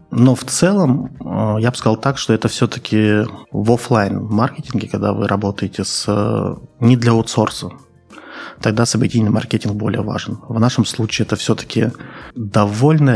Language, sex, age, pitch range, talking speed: Russian, male, 20-39, 100-120 Hz, 135 wpm